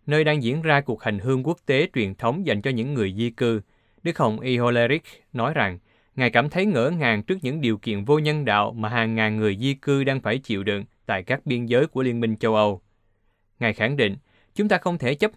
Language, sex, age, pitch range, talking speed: Vietnamese, male, 20-39, 105-140 Hz, 240 wpm